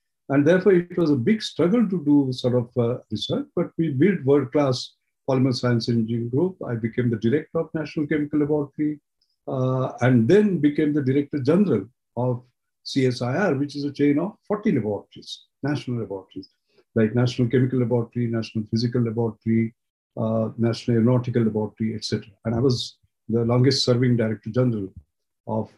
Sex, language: male, English